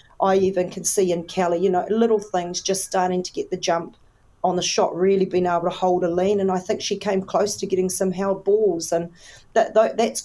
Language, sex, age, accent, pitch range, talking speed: English, female, 40-59, Australian, 180-190 Hz, 230 wpm